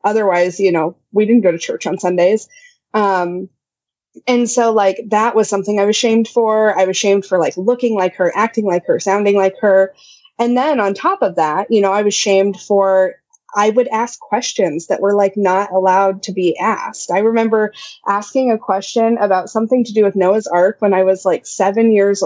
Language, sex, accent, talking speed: English, female, American, 210 wpm